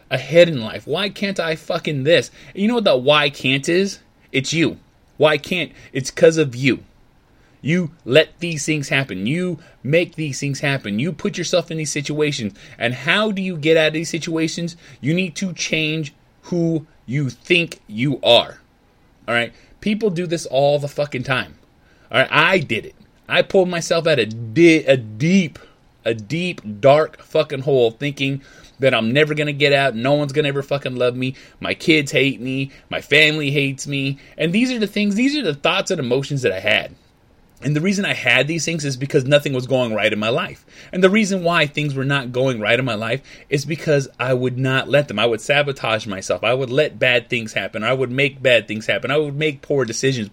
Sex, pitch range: male, 130-165 Hz